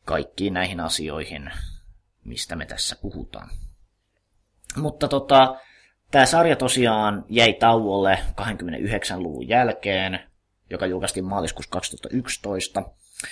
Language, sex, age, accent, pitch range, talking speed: Finnish, male, 20-39, native, 90-110 Hz, 90 wpm